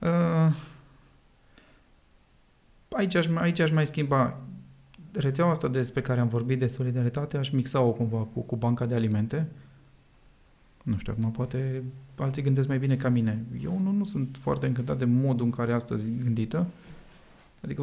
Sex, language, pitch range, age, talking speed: male, Romanian, 120-145 Hz, 30-49, 150 wpm